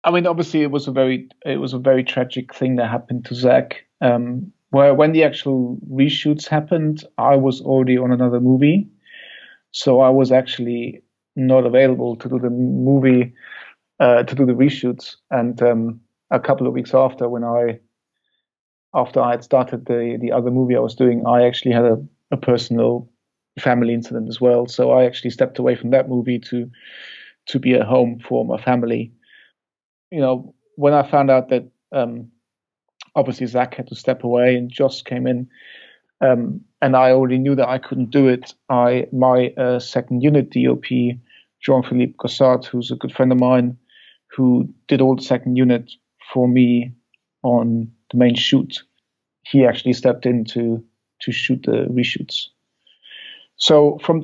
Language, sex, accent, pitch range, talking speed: English, male, German, 120-135 Hz, 175 wpm